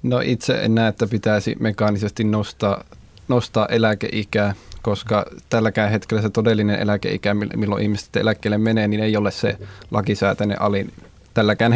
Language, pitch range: Finnish, 105-120 Hz